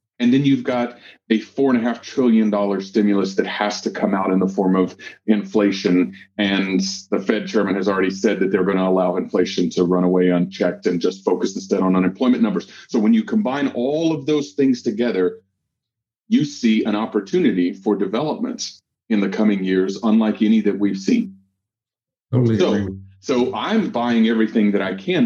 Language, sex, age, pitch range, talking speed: English, male, 40-59, 100-135 Hz, 185 wpm